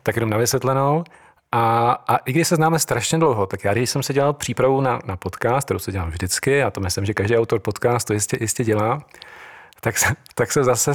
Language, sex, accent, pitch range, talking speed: Czech, male, native, 110-130 Hz, 230 wpm